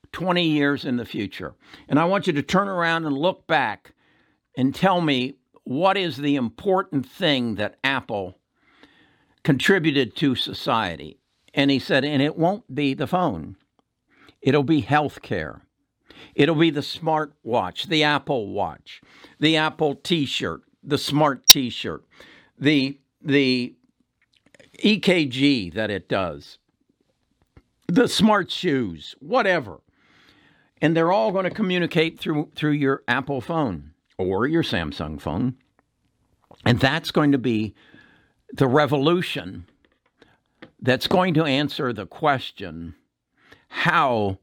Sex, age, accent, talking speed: male, 60-79, American, 125 wpm